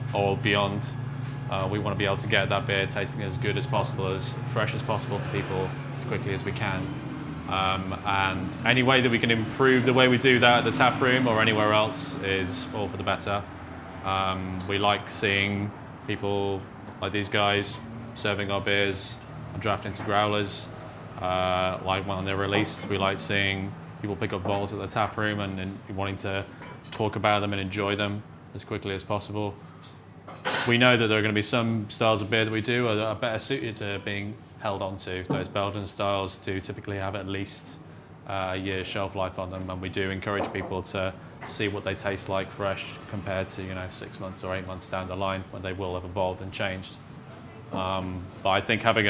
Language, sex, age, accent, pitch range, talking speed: English, male, 20-39, British, 95-115 Hz, 210 wpm